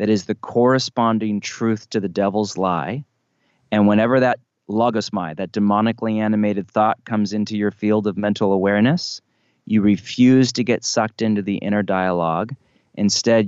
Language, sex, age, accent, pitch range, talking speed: English, male, 30-49, American, 95-115 Hz, 150 wpm